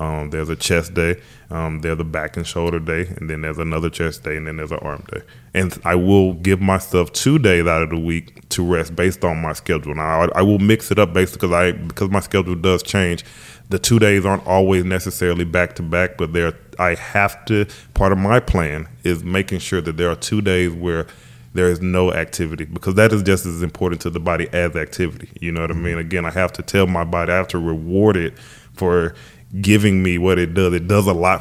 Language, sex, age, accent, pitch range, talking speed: English, male, 20-39, American, 85-95 Hz, 235 wpm